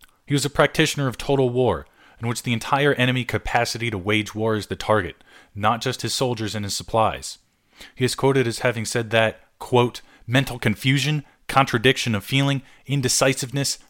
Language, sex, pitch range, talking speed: English, male, 105-135 Hz, 175 wpm